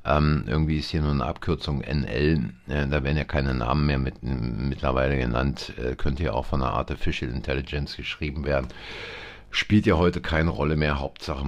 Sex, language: male, German